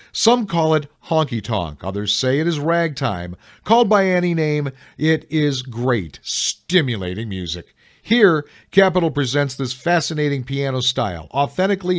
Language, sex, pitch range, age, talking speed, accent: English, male, 115-160 Hz, 50-69, 130 wpm, American